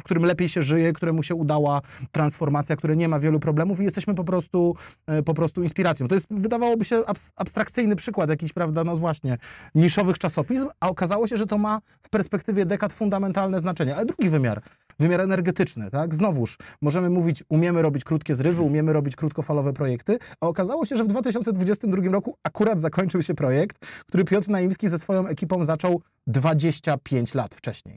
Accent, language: native, Polish